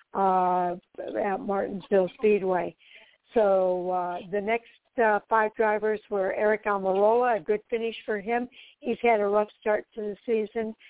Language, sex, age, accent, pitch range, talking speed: English, female, 60-79, American, 195-235 Hz, 150 wpm